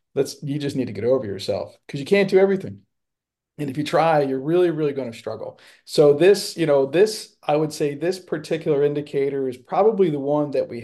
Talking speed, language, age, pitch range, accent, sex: 220 wpm, English, 40-59, 125-150 Hz, American, male